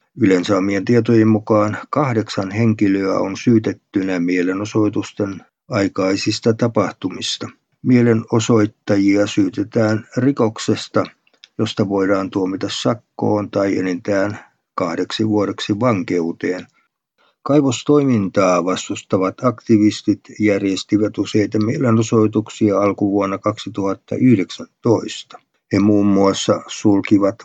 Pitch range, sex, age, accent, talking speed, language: 95-115 Hz, male, 50-69, native, 75 wpm, Finnish